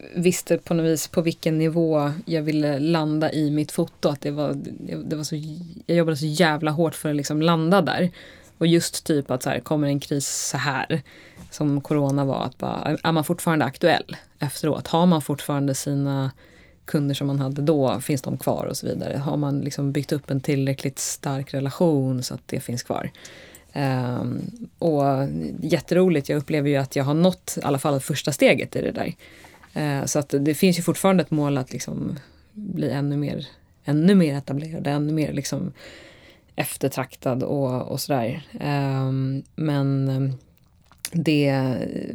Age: 20-39